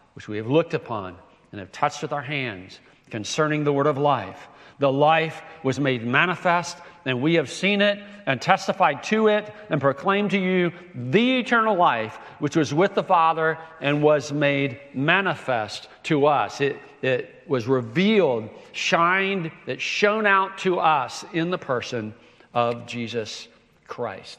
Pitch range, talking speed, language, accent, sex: 135-175 Hz, 155 wpm, English, American, male